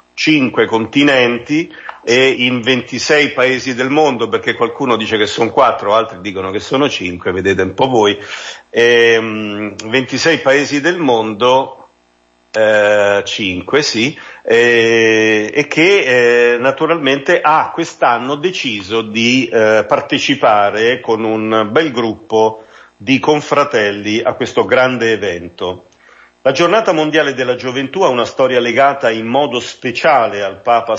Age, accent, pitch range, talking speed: 50-69, native, 110-140 Hz, 130 wpm